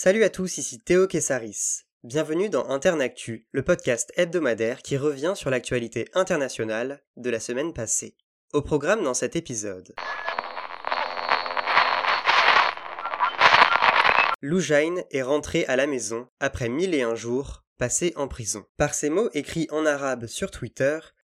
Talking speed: 135 wpm